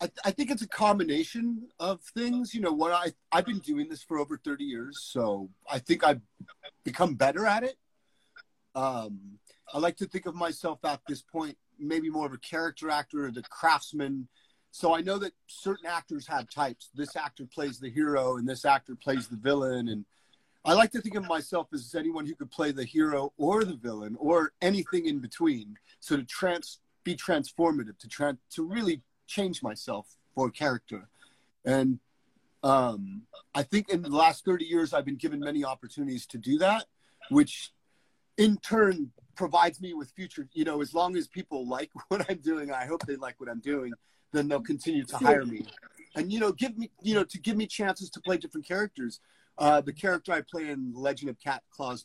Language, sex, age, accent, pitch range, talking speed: Italian, male, 40-59, American, 135-205 Hz, 200 wpm